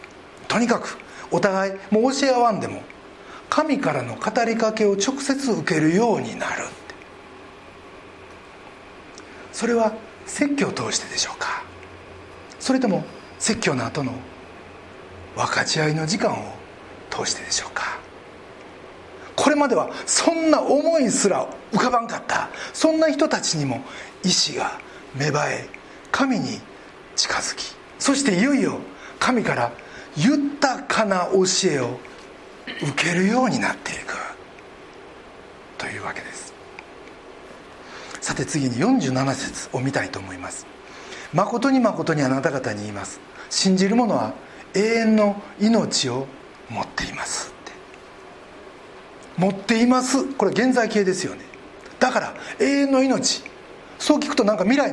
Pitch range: 185-275 Hz